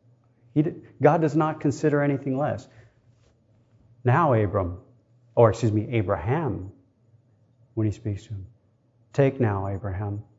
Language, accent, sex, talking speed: English, American, male, 125 wpm